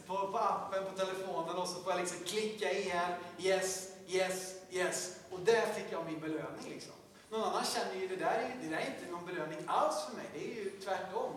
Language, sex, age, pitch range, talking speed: Swedish, male, 30-49, 170-225 Hz, 215 wpm